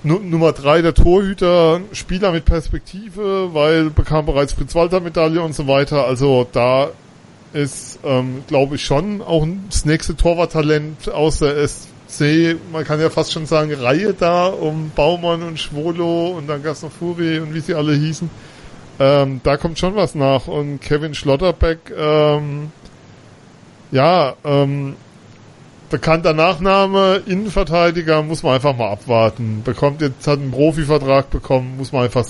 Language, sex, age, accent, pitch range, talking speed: German, male, 40-59, German, 135-170 Hz, 145 wpm